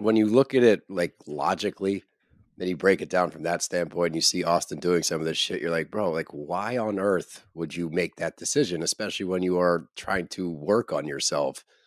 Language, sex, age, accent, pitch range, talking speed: English, male, 30-49, American, 85-105 Hz, 230 wpm